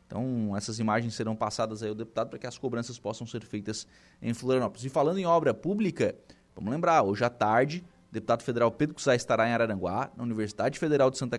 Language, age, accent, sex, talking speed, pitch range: Portuguese, 20-39, Brazilian, male, 210 wpm, 115-160 Hz